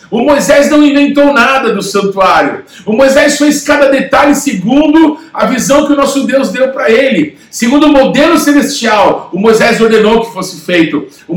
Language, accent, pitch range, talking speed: Portuguese, Brazilian, 235-300 Hz, 175 wpm